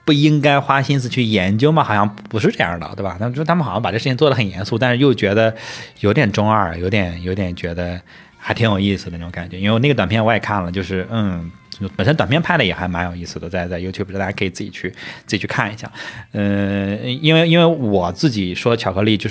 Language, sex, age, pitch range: Chinese, male, 20-39, 95-110 Hz